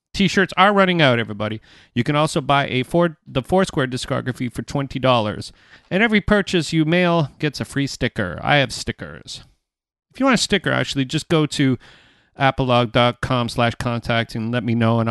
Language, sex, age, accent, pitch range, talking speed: English, male, 40-59, American, 120-170 Hz, 185 wpm